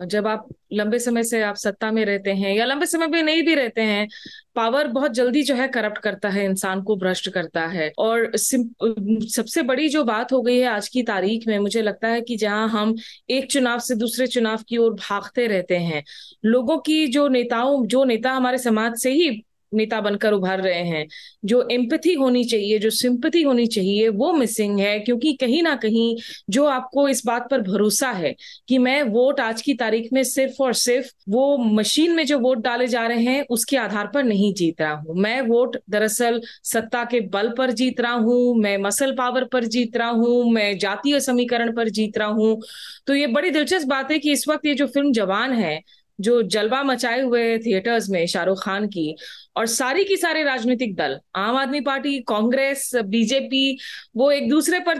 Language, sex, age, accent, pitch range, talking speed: Hindi, female, 20-39, native, 215-270 Hz, 200 wpm